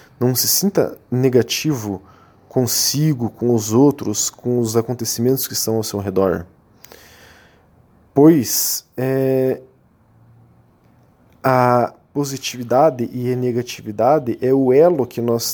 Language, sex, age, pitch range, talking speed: Portuguese, male, 20-39, 110-140 Hz, 110 wpm